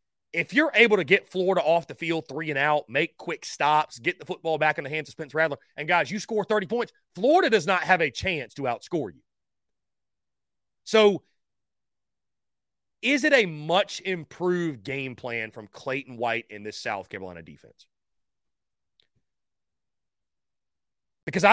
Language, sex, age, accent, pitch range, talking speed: English, male, 30-49, American, 140-205 Hz, 160 wpm